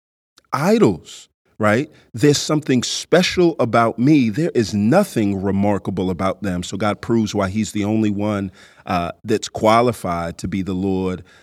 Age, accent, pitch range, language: 40-59, American, 95-120 Hz, English